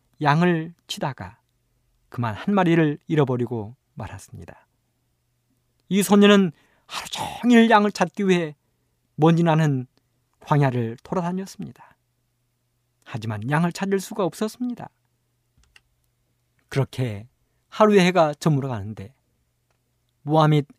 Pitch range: 120-175 Hz